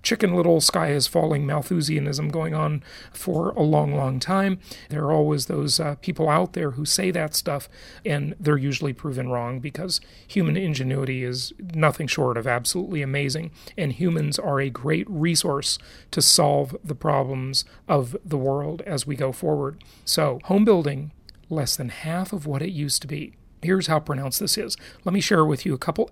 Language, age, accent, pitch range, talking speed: English, 40-59, American, 140-180 Hz, 185 wpm